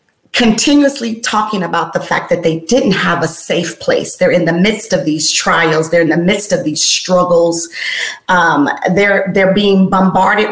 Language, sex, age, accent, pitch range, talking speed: English, female, 40-59, American, 170-210 Hz, 175 wpm